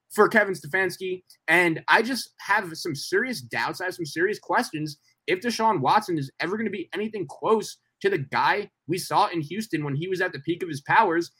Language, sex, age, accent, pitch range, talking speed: English, male, 20-39, American, 160-220 Hz, 215 wpm